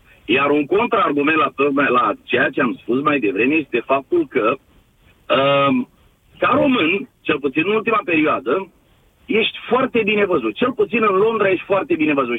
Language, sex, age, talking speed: Romanian, male, 40-59, 170 wpm